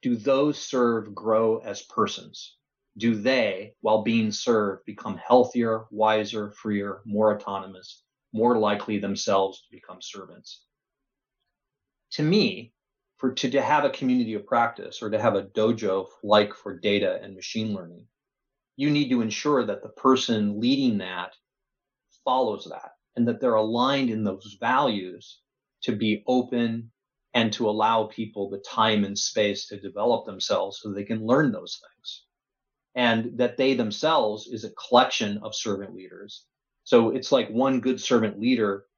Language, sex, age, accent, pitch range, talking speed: English, male, 30-49, American, 105-125 Hz, 150 wpm